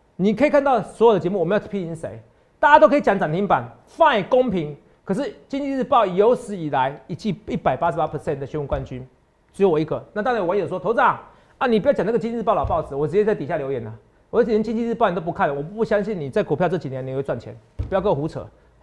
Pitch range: 150-210 Hz